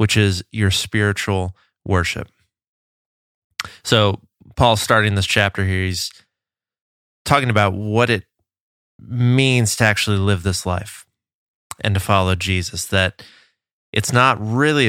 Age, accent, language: 20-39, American, English